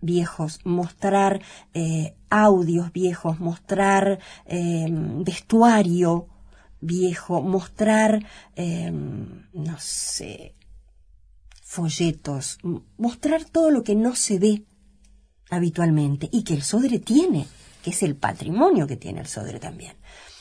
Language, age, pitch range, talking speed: Spanish, 50-69, 145-195 Hz, 105 wpm